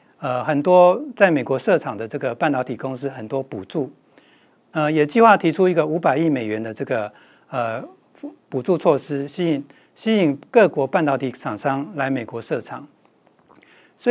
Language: Chinese